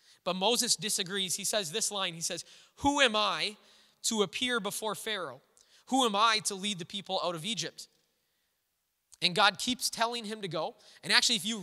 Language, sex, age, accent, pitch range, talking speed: English, male, 20-39, American, 180-220 Hz, 190 wpm